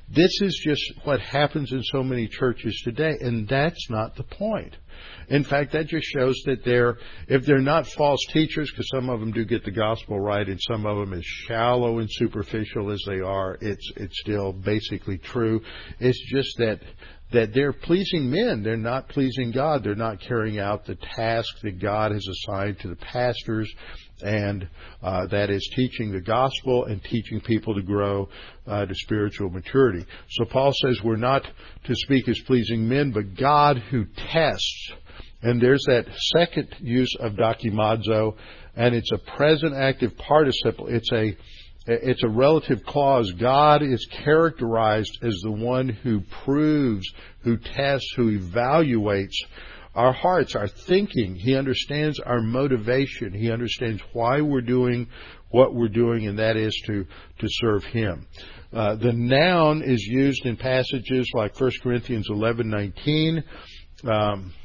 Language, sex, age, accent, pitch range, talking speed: English, male, 60-79, American, 105-130 Hz, 160 wpm